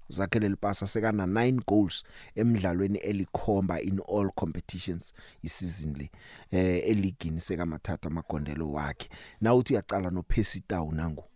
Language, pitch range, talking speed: English, 90-105 Hz, 135 wpm